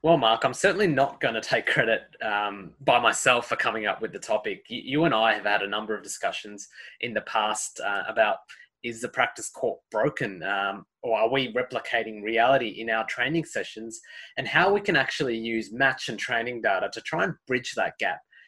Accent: Australian